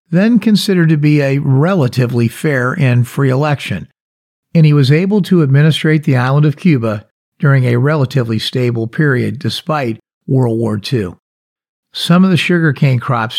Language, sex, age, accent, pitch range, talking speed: English, male, 50-69, American, 120-155 Hz, 150 wpm